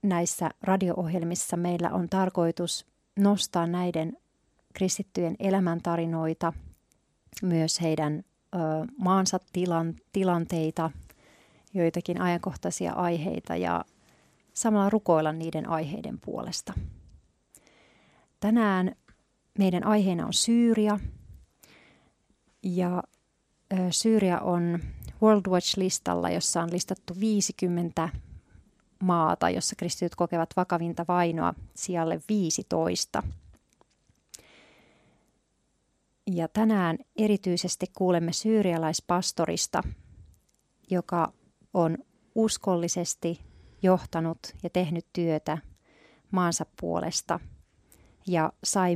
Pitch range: 165-190 Hz